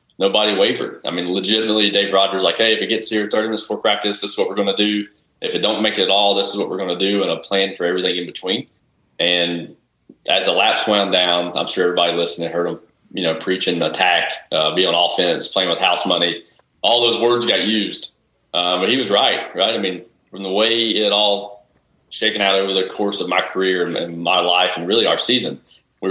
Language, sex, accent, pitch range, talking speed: English, male, American, 90-100 Hz, 235 wpm